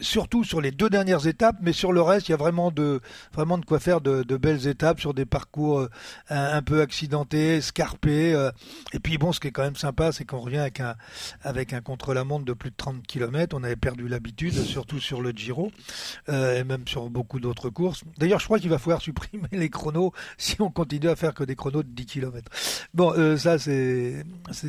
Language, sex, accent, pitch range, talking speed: French, male, French, 125-160 Hz, 230 wpm